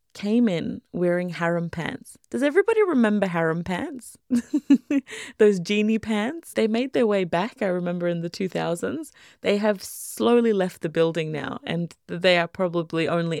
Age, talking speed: 20-39, 155 wpm